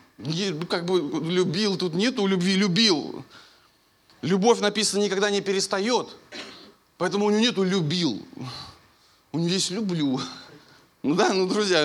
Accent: native